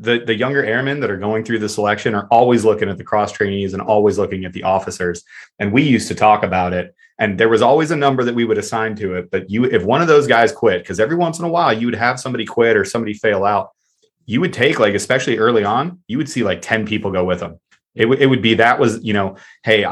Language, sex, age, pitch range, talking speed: English, male, 30-49, 100-115 Hz, 275 wpm